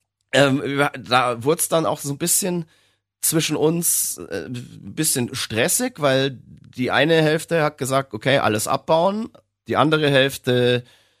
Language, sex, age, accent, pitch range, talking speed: German, male, 30-49, German, 105-140 Hz, 135 wpm